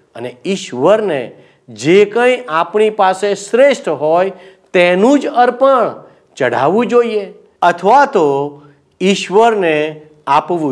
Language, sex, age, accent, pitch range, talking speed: Gujarati, male, 50-69, native, 155-215 Hz, 85 wpm